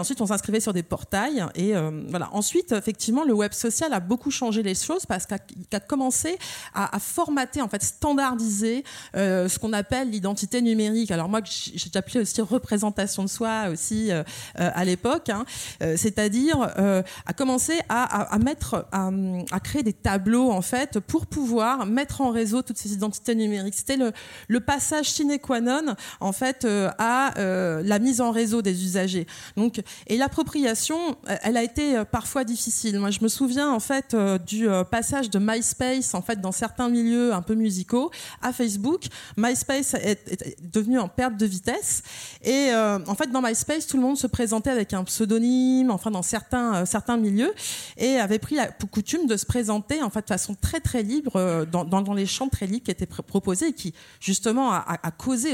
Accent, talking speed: French, 190 wpm